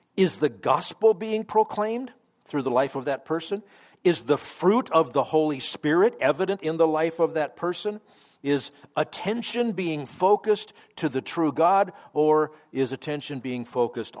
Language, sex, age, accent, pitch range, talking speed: English, male, 50-69, American, 130-180 Hz, 160 wpm